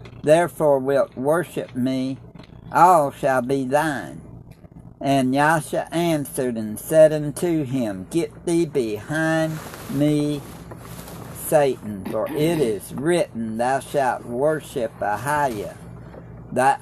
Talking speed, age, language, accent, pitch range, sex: 105 wpm, 60-79, English, American, 115-155 Hz, male